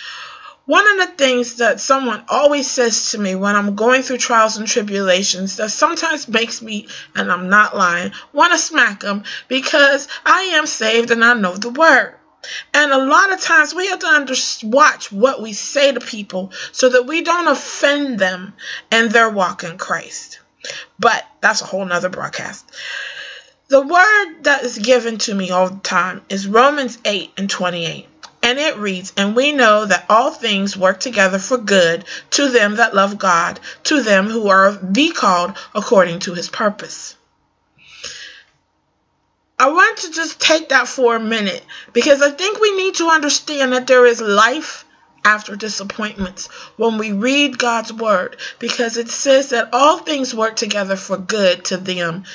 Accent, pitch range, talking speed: American, 200-285 Hz, 175 wpm